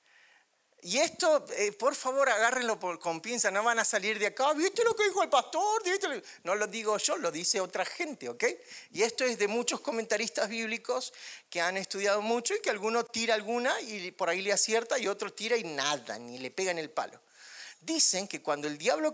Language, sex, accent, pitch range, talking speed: Spanish, male, Argentinian, 180-270 Hz, 215 wpm